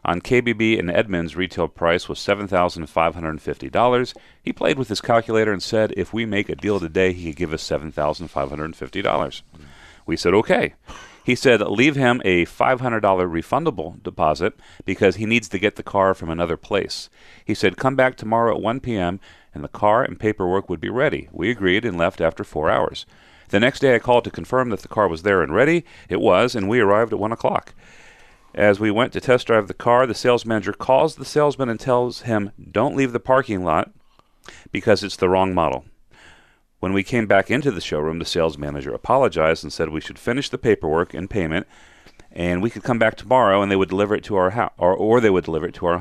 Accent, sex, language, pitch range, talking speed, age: American, male, English, 85-115 Hz, 210 wpm, 40-59